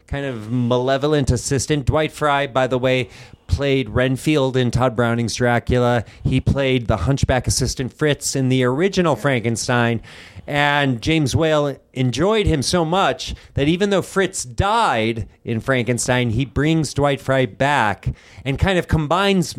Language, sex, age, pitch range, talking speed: English, male, 40-59, 115-145 Hz, 145 wpm